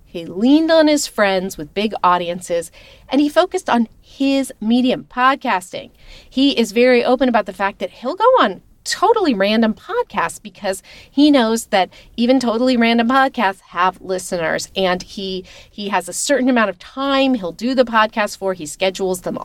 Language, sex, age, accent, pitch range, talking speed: English, female, 40-59, American, 190-260 Hz, 175 wpm